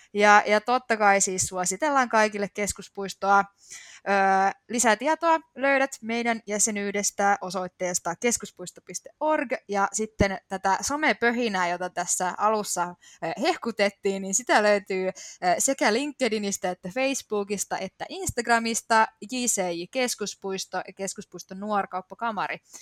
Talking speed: 95 wpm